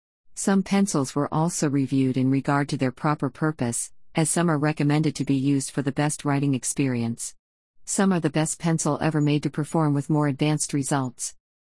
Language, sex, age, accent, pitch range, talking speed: English, female, 50-69, American, 135-170 Hz, 185 wpm